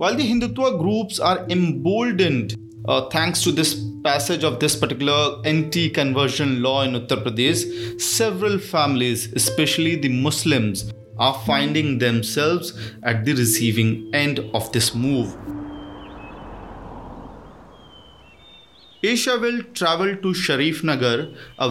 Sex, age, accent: male, 30-49, Indian